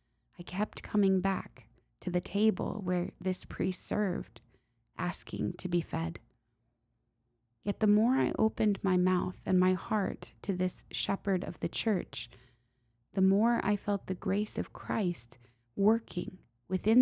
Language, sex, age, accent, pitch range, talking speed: English, female, 20-39, American, 130-200 Hz, 145 wpm